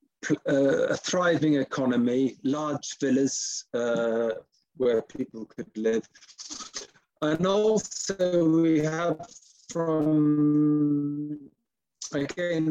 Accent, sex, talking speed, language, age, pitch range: British, male, 80 wpm, English, 50-69, 120-150 Hz